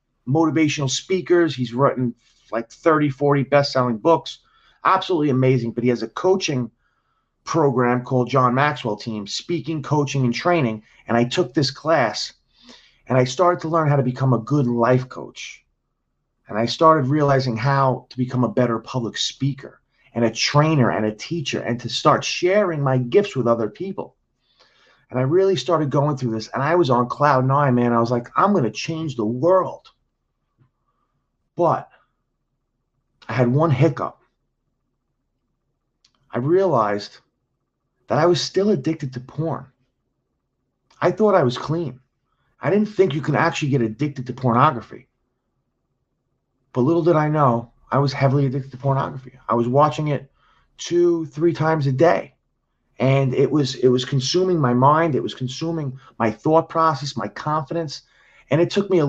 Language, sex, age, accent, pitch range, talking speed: English, male, 30-49, American, 125-160 Hz, 160 wpm